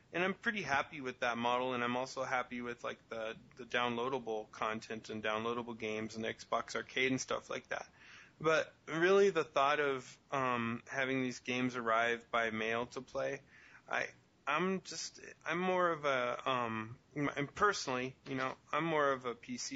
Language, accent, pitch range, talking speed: English, American, 120-140 Hz, 180 wpm